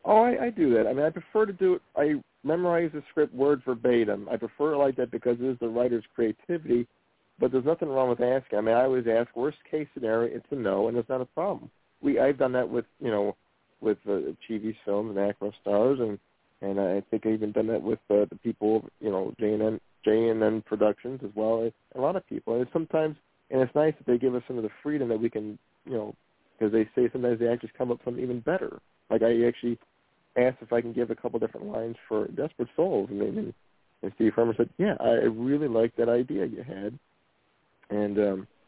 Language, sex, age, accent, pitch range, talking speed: English, male, 50-69, American, 110-130 Hz, 240 wpm